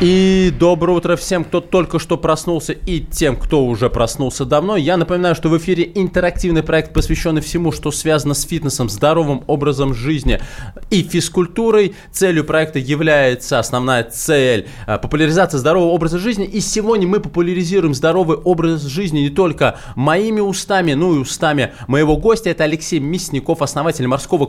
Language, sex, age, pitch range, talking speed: Russian, male, 20-39, 120-165 Hz, 150 wpm